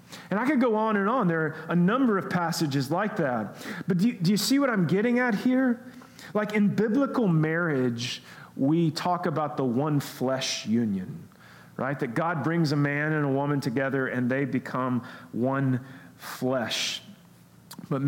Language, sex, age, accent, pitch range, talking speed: English, male, 40-59, American, 145-210 Hz, 175 wpm